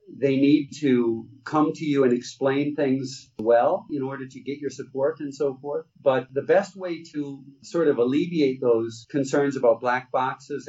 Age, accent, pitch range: 50-69, American, 125-155 Hz